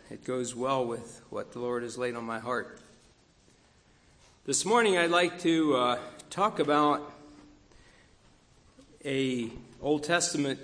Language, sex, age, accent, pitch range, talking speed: English, male, 60-79, American, 125-155 Hz, 130 wpm